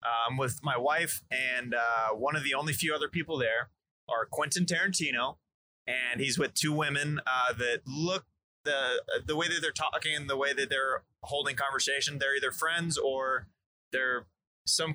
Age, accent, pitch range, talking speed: 20-39, American, 120-145 Hz, 180 wpm